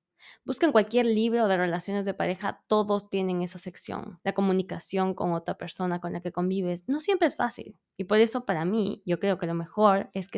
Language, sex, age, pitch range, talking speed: English, female, 20-39, 175-215 Hz, 210 wpm